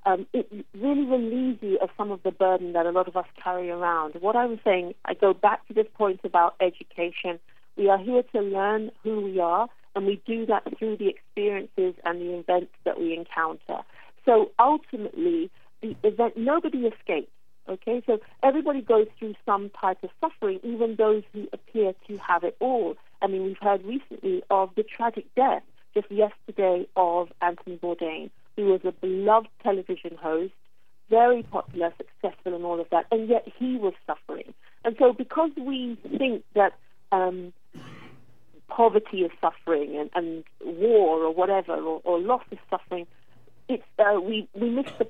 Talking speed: 175 wpm